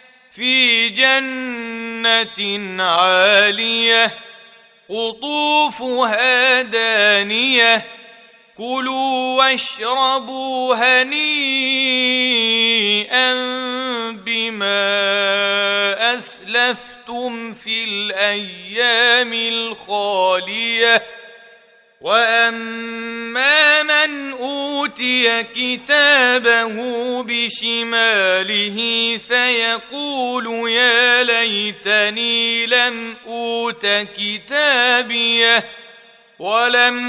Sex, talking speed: male, 40 wpm